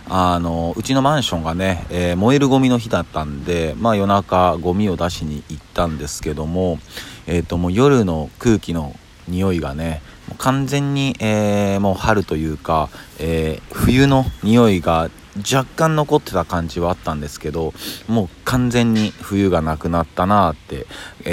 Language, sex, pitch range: Japanese, male, 85-100 Hz